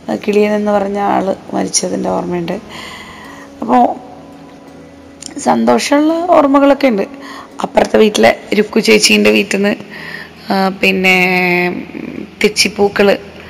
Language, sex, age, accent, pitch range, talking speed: Malayalam, female, 30-49, native, 200-275 Hz, 75 wpm